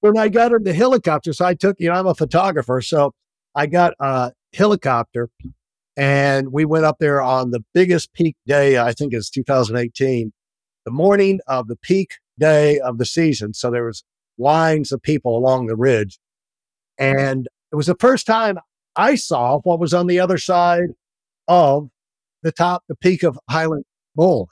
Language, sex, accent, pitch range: English, male, American, 125-170 Hz